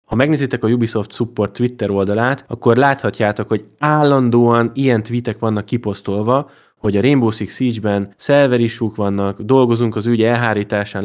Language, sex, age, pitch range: Hungarian, male, 20-39, 100-125 Hz